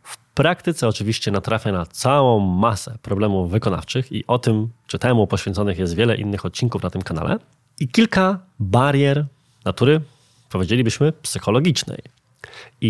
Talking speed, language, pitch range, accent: 135 wpm, Polish, 100-130 Hz, native